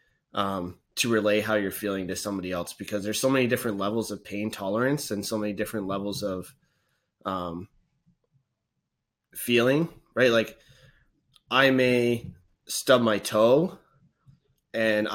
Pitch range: 105-125 Hz